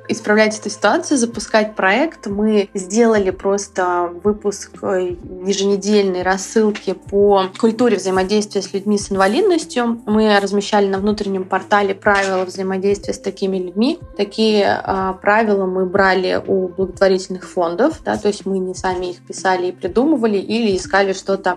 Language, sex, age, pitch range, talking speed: Russian, female, 20-39, 190-220 Hz, 135 wpm